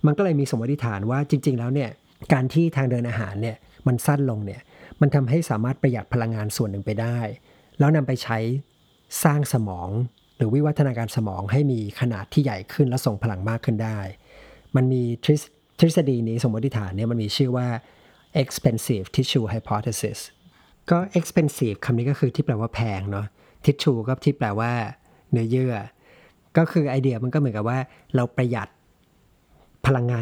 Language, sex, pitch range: Thai, male, 110-140 Hz